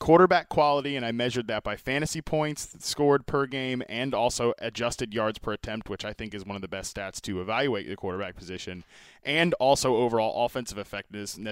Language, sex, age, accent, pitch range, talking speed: English, male, 20-39, American, 110-145 Hz, 195 wpm